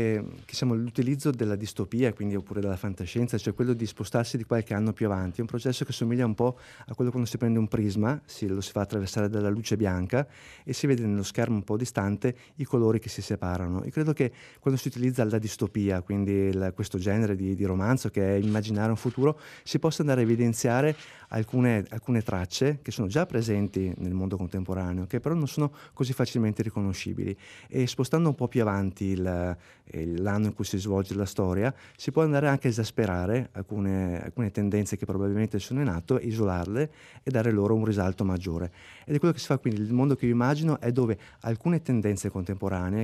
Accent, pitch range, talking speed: native, 100-125 Hz, 205 wpm